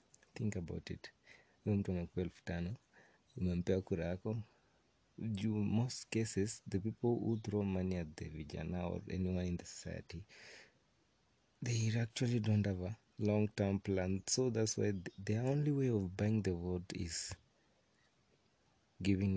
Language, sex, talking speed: Swahili, male, 125 wpm